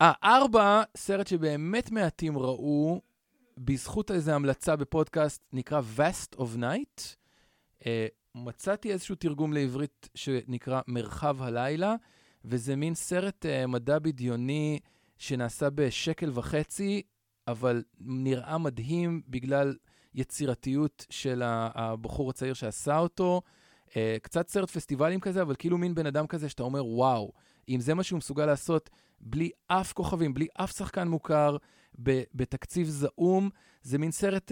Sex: male